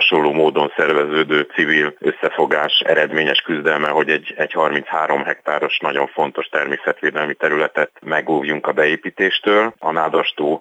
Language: Hungarian